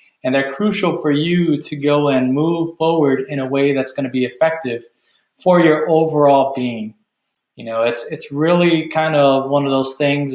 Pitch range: 135-165 Hz